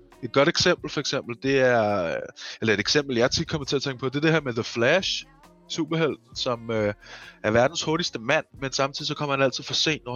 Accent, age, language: native, 20-39, Danish